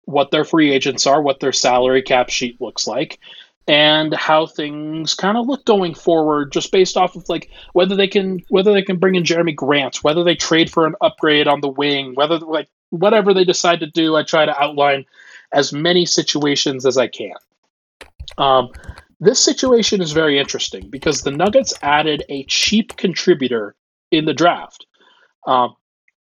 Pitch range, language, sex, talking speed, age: 140-180 Hz, English, male, 180 wpm, 30-49